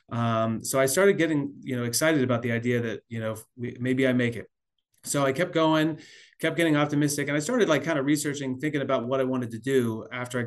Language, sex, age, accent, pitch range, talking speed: English, male, 30-49, American, 125-150 Hz, 235 wpm